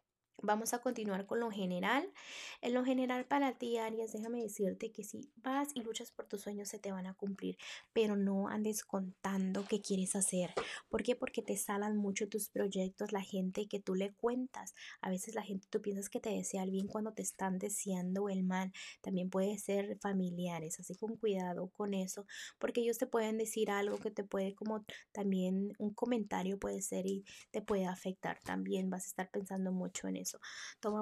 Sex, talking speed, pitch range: female, 195 wpm, 190-220 Hz